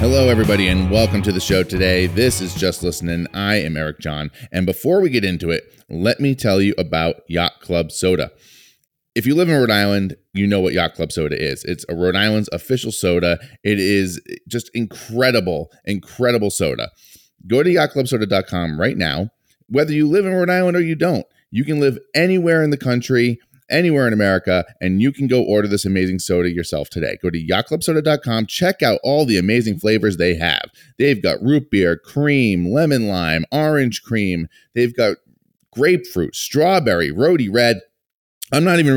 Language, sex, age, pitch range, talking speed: English, male, 30-49, 90-130 Hz, 180 wpm